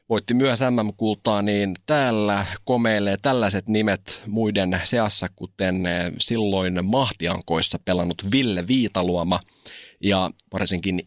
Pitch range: 95-120 Hz